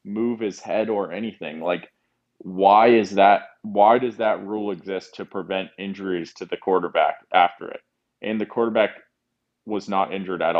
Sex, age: male, 20-39